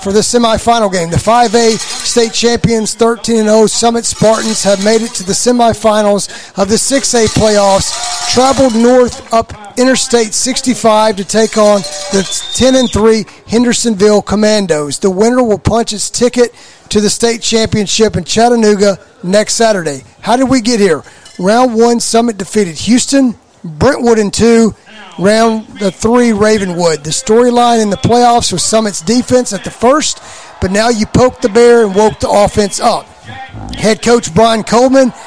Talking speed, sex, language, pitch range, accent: 155 wpm, male, English, 200-235 Hz, American